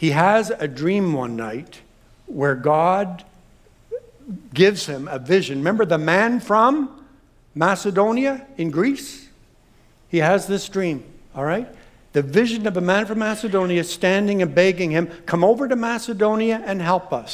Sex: male